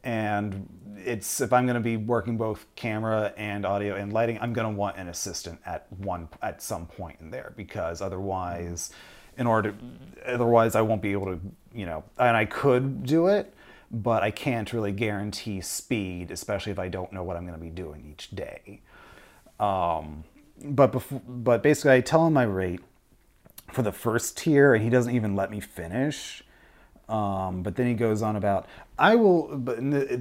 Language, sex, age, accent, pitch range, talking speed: English, male, 30-49, American, 95-145 Hz, 190 wpm